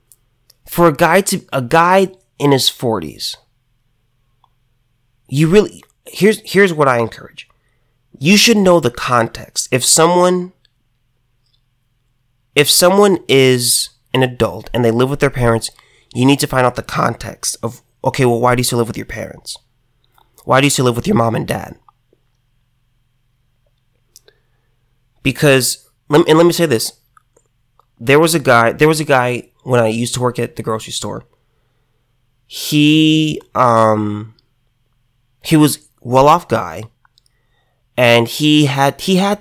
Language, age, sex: English, 30-49, male